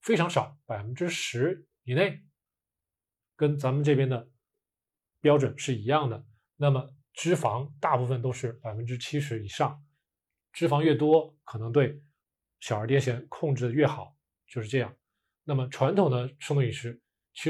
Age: 20-39